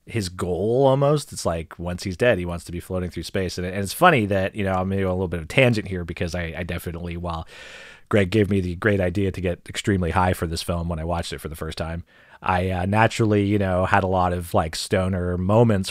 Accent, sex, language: American, male, English